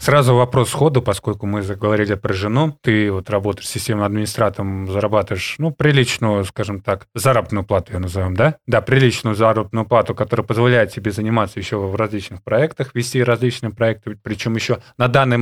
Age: 20-39